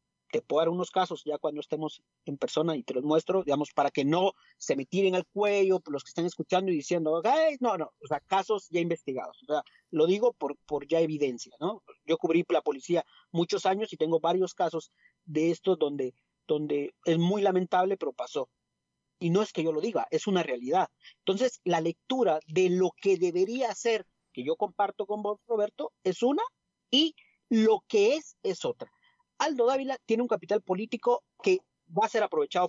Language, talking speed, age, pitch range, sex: Spanish, 195 wpm, 40-59, 165-225 Hz, male